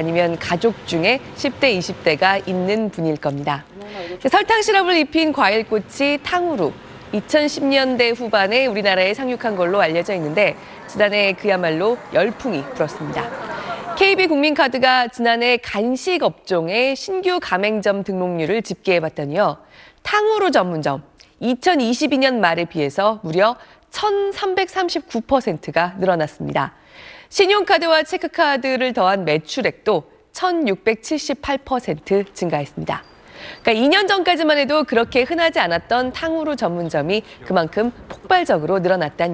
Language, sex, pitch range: Korean, female, 180-295 Hz